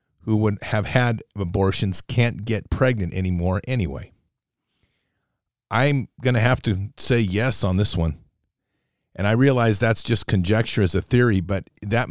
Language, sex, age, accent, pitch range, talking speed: English, male, 40-59, American, 95-115 Hz, 155 wpm